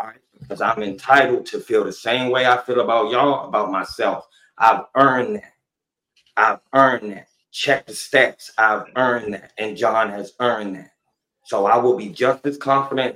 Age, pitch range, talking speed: 30-49, 110-135 Hz, 175 wpm